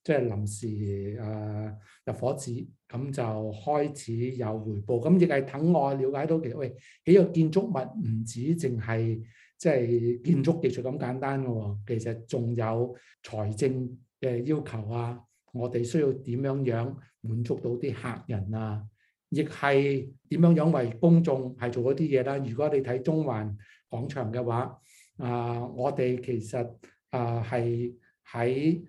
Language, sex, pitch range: Chinese, male, 115-140 Hz